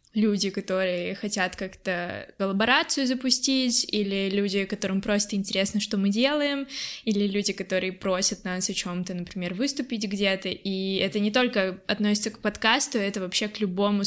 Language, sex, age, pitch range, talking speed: Russian, female, 20-39, 195-225 Hz, 155 wpm